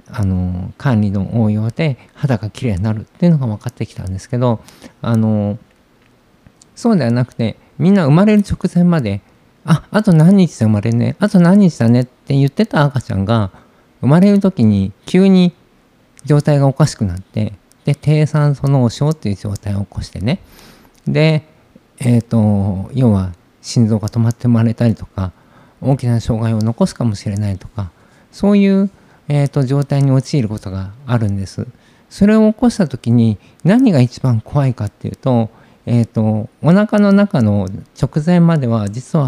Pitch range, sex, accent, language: 110-155 Hz, male, native, Japanese